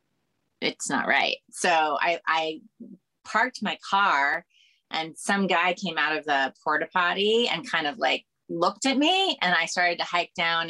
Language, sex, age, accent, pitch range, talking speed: English, female, 30-49, American, 155-205 Hz, 175 wpm